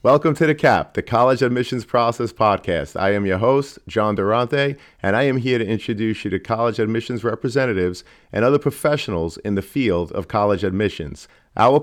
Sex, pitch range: male, 95-125 Hz